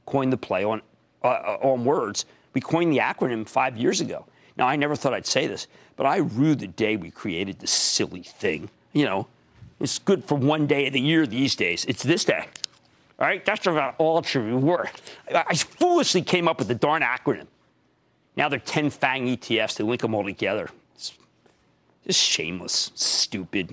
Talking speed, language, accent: 190 wpm, English, American